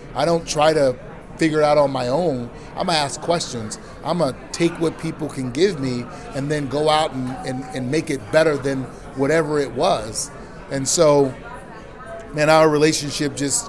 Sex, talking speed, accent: male, 195 wpm, American